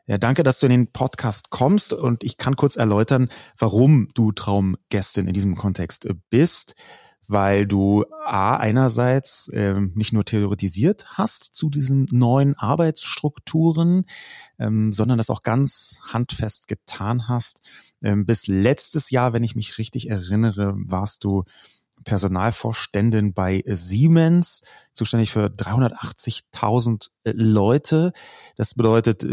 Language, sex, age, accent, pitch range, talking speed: German, male, 30-49, German, 105-130 Hz, 125 wpm